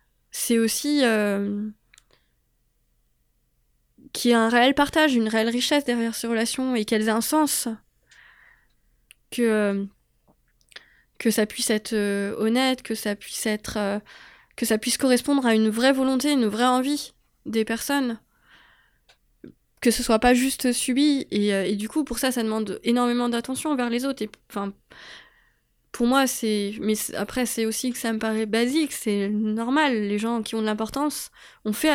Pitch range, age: 215-265 Hz, 20-39